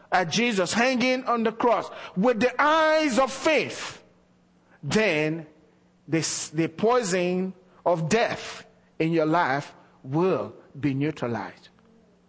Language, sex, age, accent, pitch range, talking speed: English, male, 50-69, Nigerian, 190-275 Hz, 110 wpm